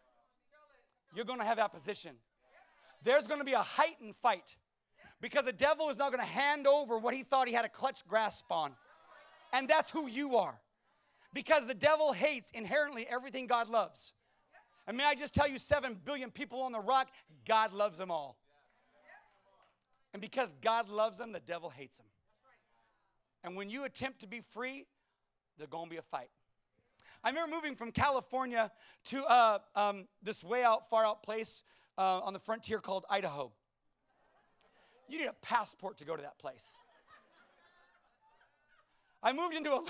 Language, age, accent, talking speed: English, 40-59, American, 170 wpm